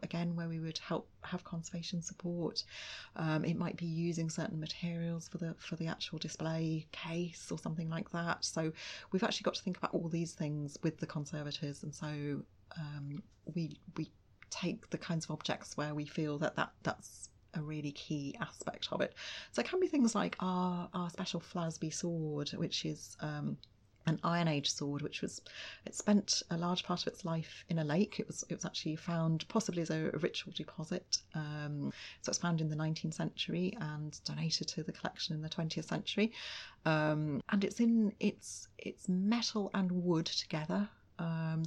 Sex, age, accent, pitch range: female, 30-49, British, 155-180 Hz